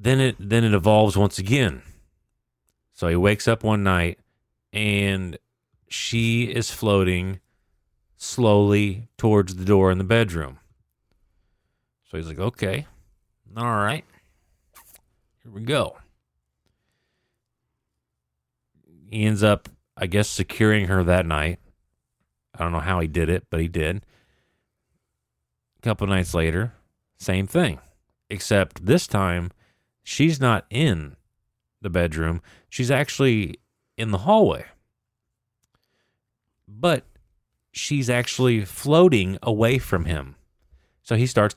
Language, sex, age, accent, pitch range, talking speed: English, male, 40-59, American, 85-115 Hz, 115 wpm